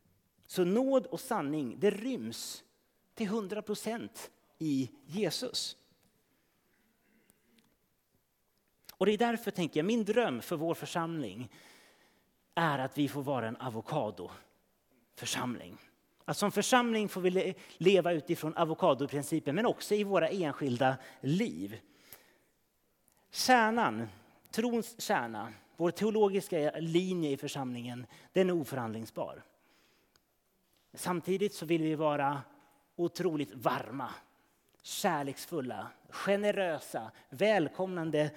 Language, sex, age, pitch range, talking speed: Swedish, male, 30-49, 140-195 Hz, 100 wpm